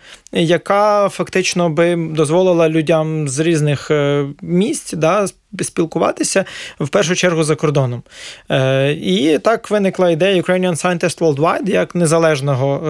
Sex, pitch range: male, 150-180 Hz